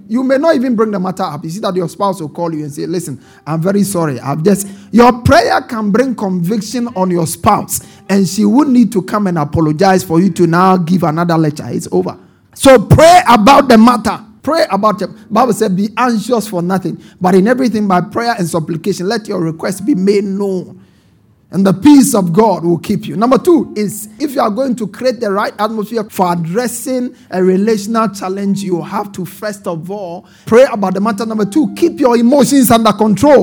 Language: English